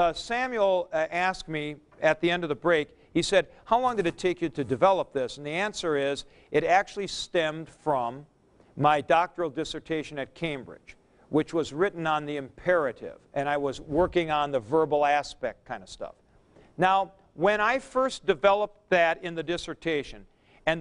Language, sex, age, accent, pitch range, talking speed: German, male, 50-69, American, 150-195 Hz, 180 wpm